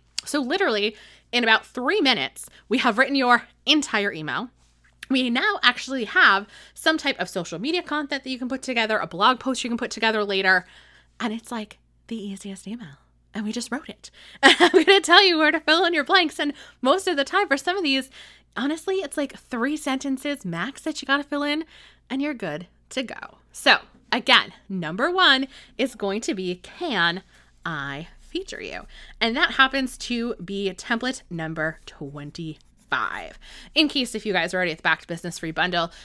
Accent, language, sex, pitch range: American, English, female, 195-295 Hz